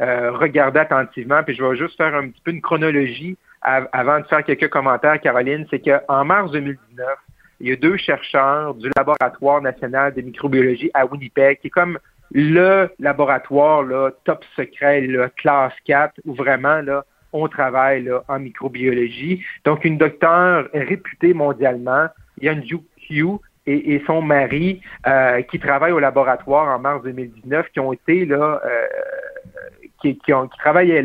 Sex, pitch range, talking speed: male, 130-165 Hz, 160 wpm